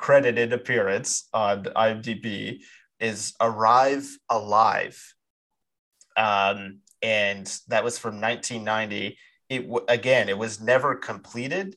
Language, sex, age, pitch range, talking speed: English, male, 30-49, 105-130 Hz, 90 wpm